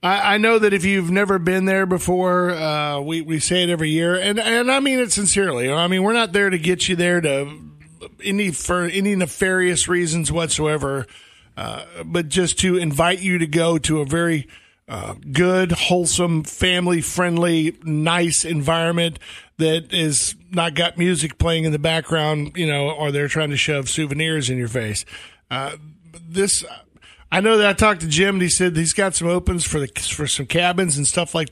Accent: American